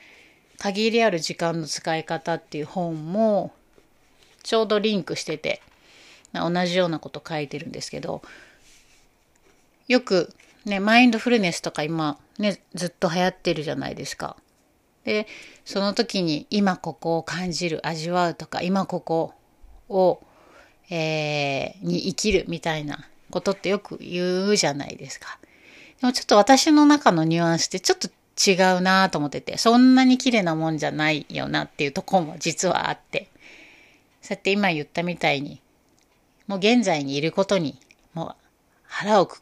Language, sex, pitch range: Japanese, female, 165-215 Hz